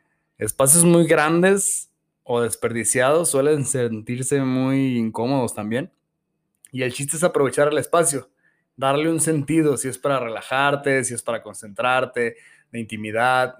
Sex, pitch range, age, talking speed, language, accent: male, 120-150 Hz, 20-39, 130 wpm, Spanish, Mexican